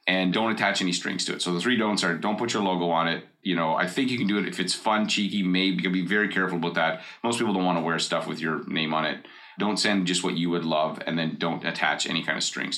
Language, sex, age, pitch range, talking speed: English, male, 30-49, 85-100 Hz, 295 wpm